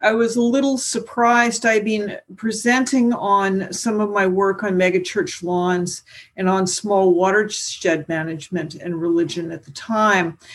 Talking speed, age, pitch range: 150 wpm, 50-69, 180-230 Hz